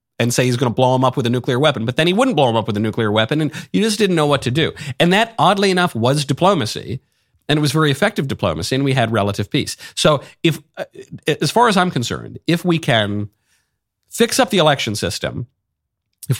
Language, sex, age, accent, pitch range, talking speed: English, male, 50-69, American, 105-150 Hz, 235 wpm